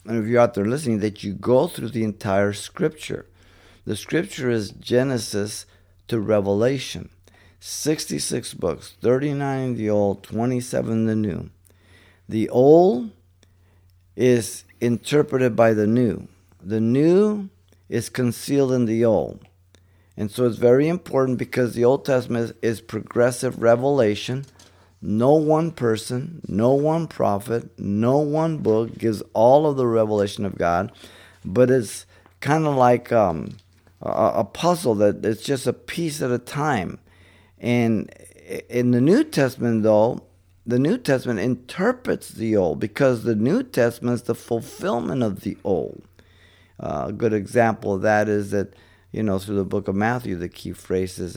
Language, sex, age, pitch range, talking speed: English, male, 50-69, 95-125 Hz, 145 wpm